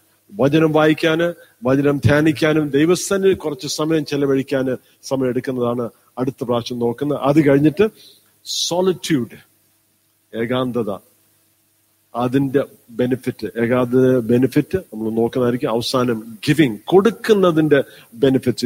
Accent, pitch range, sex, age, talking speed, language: native, 125-185 Hz, male, 50-69, 85 wpm, Malayalam